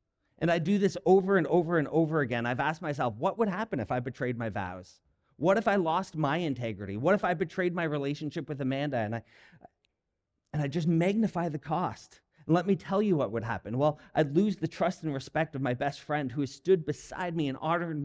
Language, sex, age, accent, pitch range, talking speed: English, male, 40-59, American, 125-170 Hz, 230 wpm